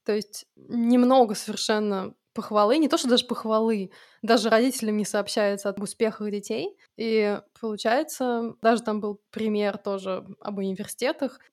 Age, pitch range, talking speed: 20-39, 210-245 Hz, 135 wpm